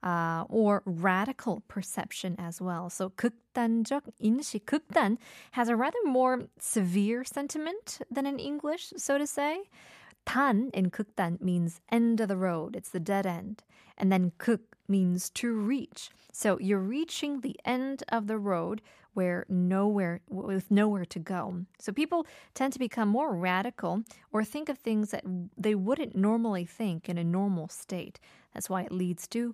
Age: 20-39